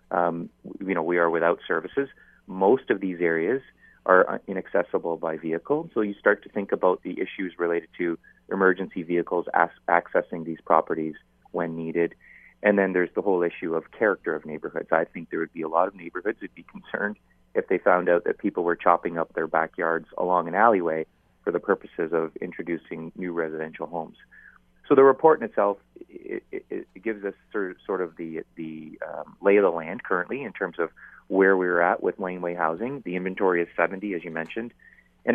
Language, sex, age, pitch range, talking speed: English, male, 30-49, 80-100 Hz, 195 wpm